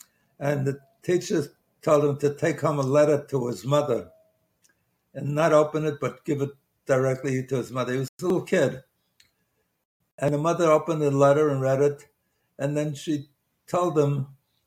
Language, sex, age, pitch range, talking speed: English, male, 60-79, 140-165 Hz, 175 wpm